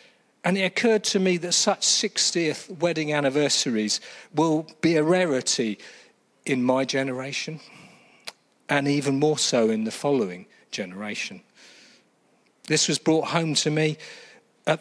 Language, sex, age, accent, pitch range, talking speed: English, male, 40-59, British, 125-170 Hz, 130 wpm